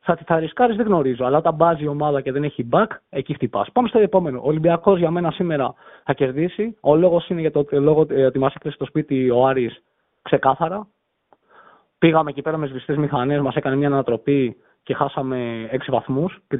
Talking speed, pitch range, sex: 200 wpm, 140-180 Hz, male